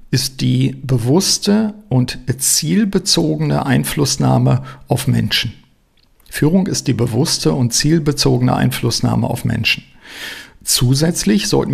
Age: 50-69